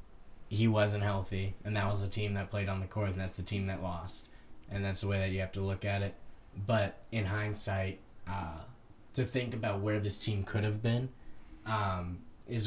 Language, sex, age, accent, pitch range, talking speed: English, male, 10-29, American, 95-110 Hz, 210 wpm